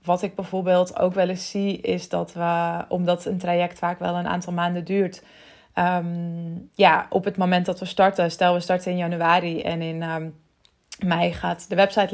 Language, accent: Dutch, Dutch